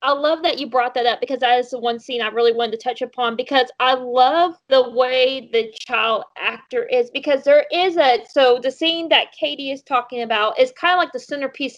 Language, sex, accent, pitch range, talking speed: English, female, American, 245-315 Hz, 235 wpm